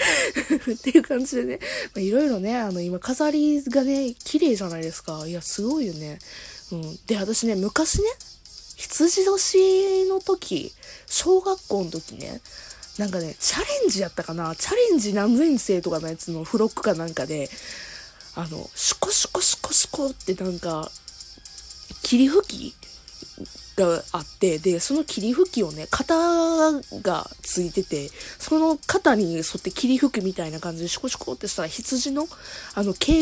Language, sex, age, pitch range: Japanese, female, 20-39, 170-280 Hz